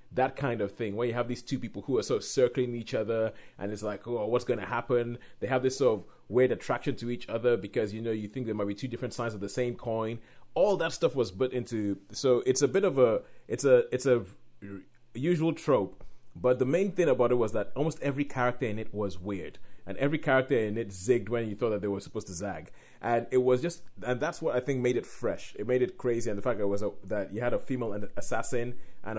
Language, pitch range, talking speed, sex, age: English, 105-130 Hz, 265 wpm, male, 30-49